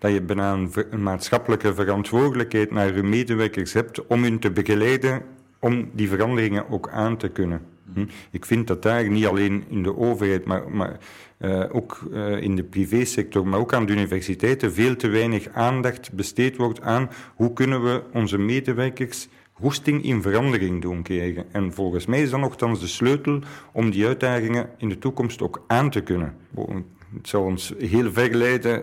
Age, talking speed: 50-69, 175 wpm